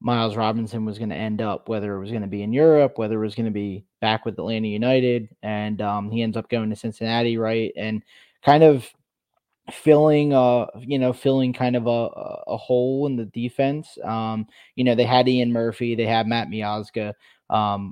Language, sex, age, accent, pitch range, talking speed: English, male, 20-39, American, 110-125 Hz, 210 wpm